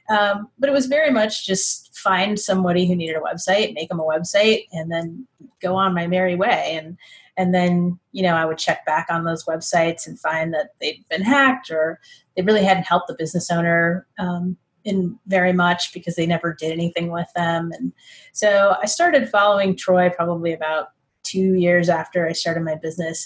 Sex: female